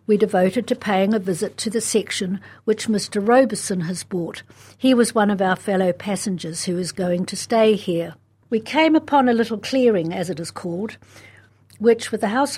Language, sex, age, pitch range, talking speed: English, female, 60-79, 185-235 Hz, 195 wpm